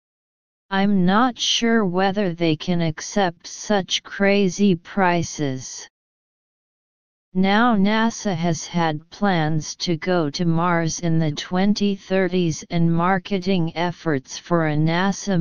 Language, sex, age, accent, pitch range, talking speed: English, female, 40-59, American, 165-195 Hz, 110 wpm